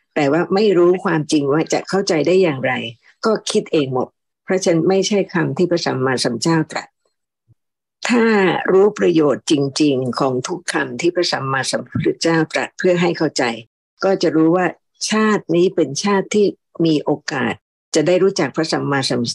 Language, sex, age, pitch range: Thai, female, 60-79, 140-180 Hz